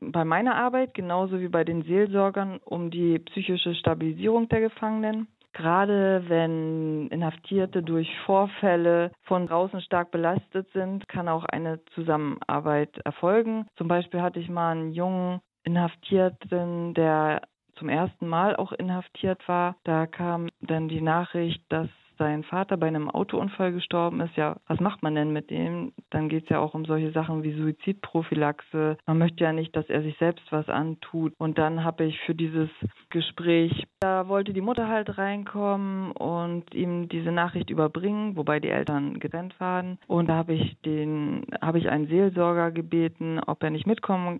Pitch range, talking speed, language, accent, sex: 160-185 Hz, 165 wpm, German, German, female